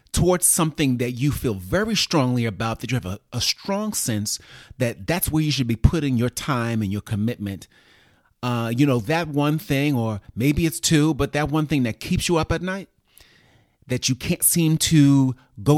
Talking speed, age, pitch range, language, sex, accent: 200 wpm, 30-49, 110-160 Hz, English, male, American